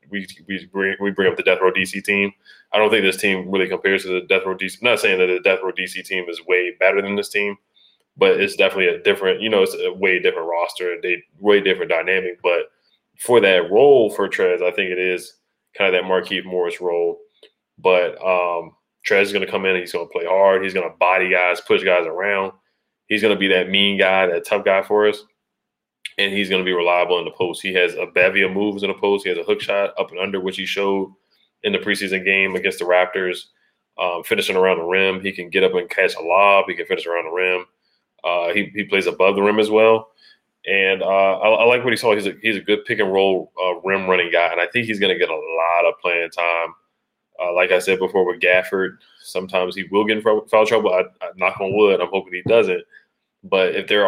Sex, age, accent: male, 20-39, American